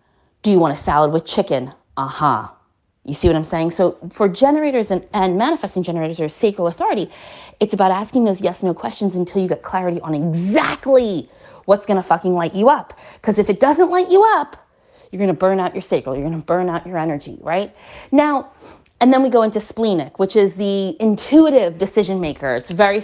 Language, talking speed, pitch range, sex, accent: English, 205 wpm, 180-260 Hz, female, American